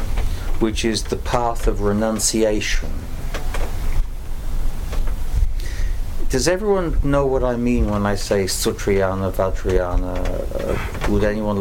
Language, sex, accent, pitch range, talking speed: English, male, British, 85-105 Hz, 105 wpm